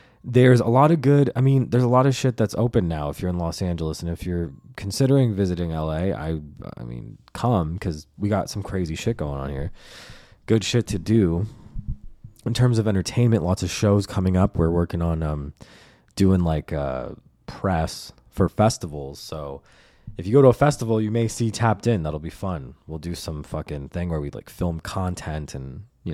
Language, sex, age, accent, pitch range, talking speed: English, male, 20-39, American, 85-120 Hz, 205 wpm